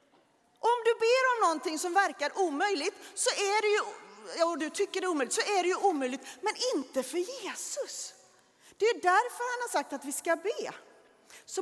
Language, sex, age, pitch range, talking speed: Swedish, female, 40-59, 270-390 Hz, 175 wpm